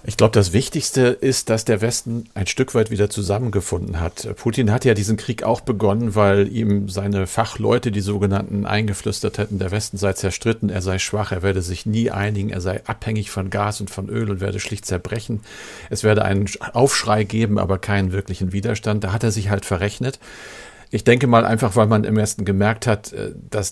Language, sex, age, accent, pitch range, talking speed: German, male, 50-69, German, 100-115 Hz, 200 wpm